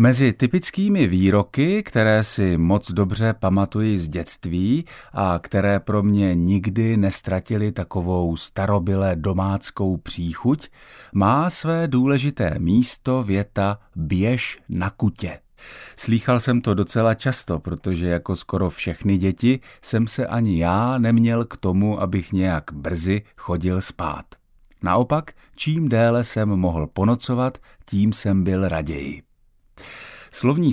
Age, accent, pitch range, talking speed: 50-69, native, 90-120 Hz, 120 wpm